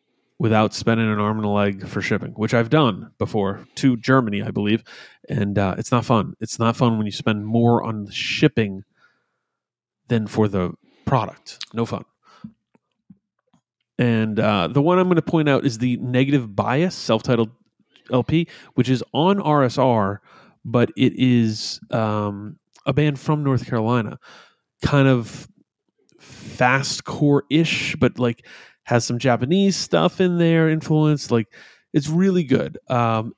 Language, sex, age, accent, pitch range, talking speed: English, male, 30-49, American, 115-150 Hz, 150 wpm